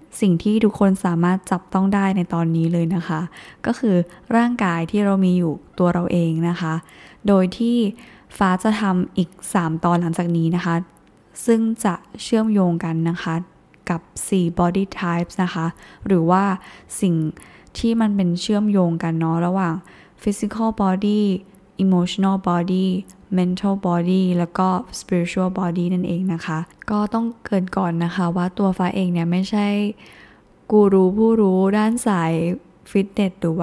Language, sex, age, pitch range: Thai, female, 10-29, 170-200 Hz